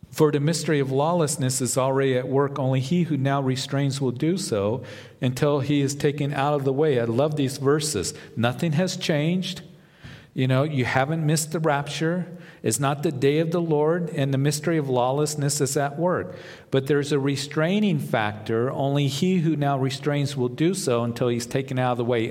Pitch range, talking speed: 115-145 Hz, 200 wpm